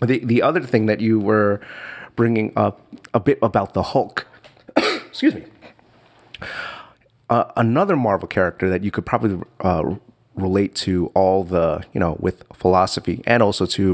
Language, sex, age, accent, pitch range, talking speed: English, male, 30-49, American, 95-120 Hz, 155 wpm